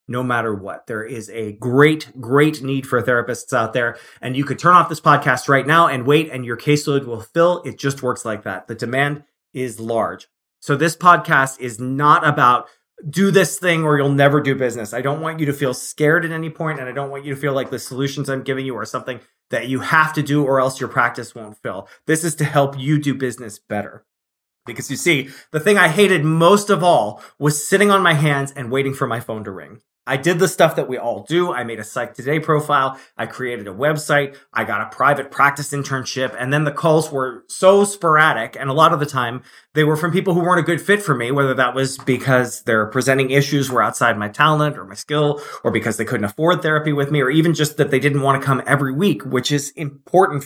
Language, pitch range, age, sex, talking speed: English, 125-155 Hz, 20-39, male, 240 wpm